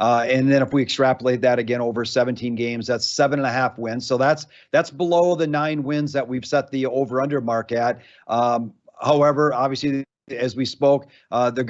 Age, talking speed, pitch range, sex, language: 40-59, 205 wpm, 130-155 Hz, male, English